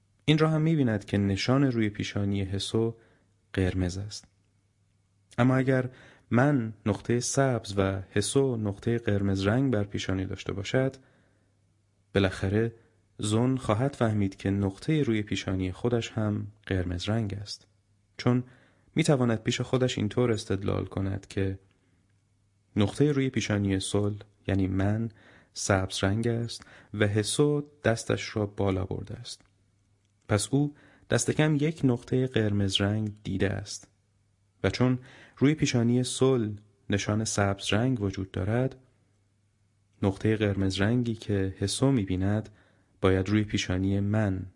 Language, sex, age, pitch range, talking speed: Persian, male, 30-49, 100-120 Hz, 130 wpm